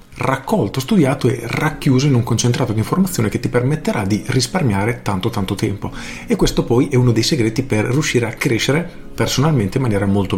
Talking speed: 185 wpm